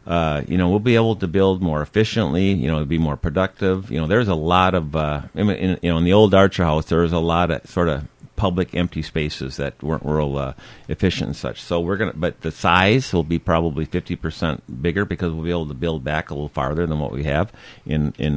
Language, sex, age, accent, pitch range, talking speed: English, male, 50-69, American, 75-90 Hz, 245 wpm